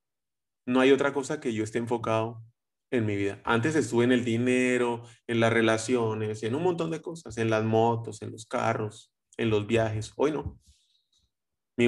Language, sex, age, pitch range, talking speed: Spanish, male, 30-49, 110-140 Hz, 180 wpm